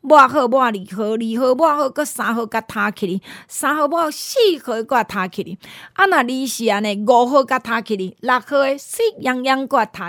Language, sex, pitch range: Chinese, female, 220-315 Hz